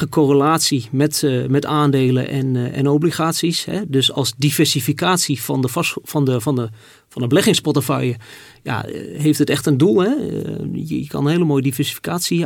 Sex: male